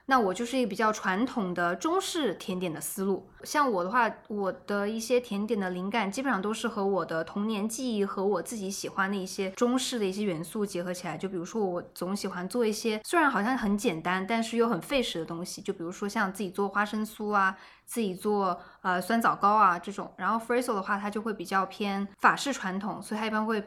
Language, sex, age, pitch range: Chinese, female, 20-39, 185-225 Hz